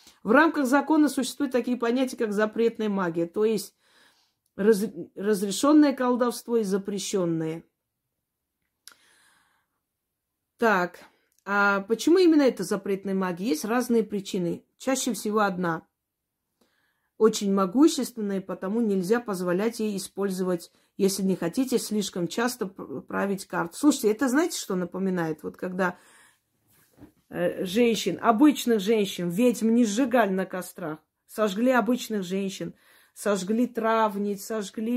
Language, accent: Russian, native